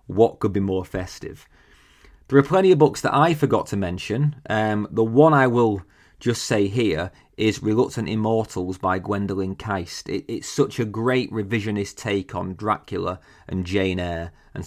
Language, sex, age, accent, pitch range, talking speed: English, male, 30-49, British, 95-130 Hz, 170 wpm